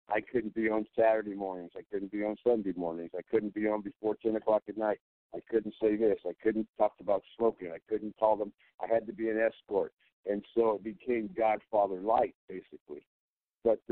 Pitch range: 100-120 Hz